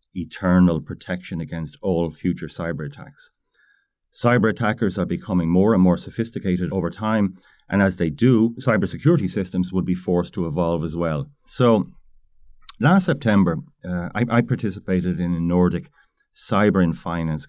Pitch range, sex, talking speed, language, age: 85-120 Hz, male, 150 wpm, English, 30-49